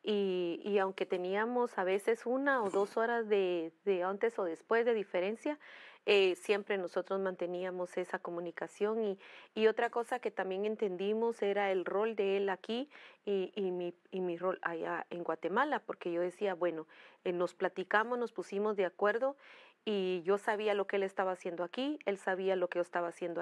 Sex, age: female, 40-59